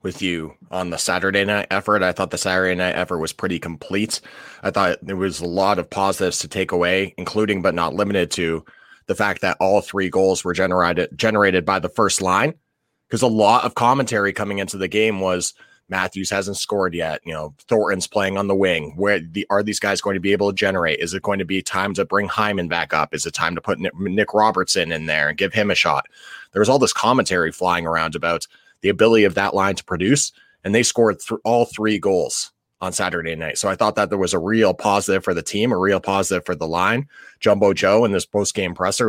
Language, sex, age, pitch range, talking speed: English, male, 30-49, 90-110 Hz, 230 wpm